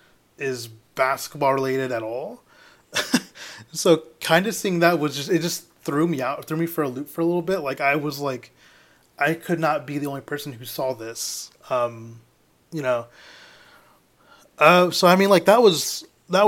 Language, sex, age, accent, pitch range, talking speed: English, male, 20-39, American, 125-155 Hz, 185 wpm